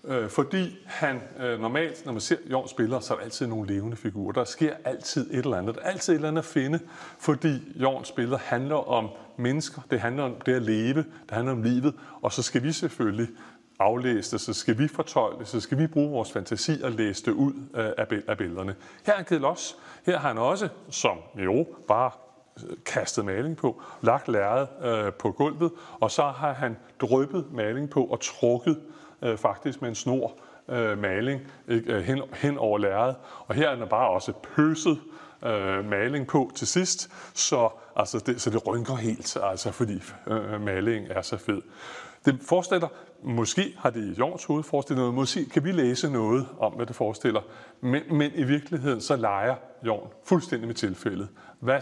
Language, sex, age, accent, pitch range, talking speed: Danish, male, 30-49, native, 115-150 Hz, 190 wpm